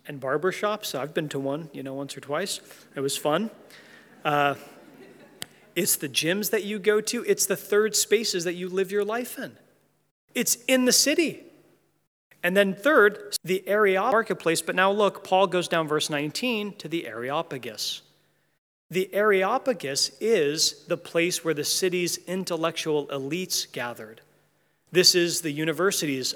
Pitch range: 155-200 Hz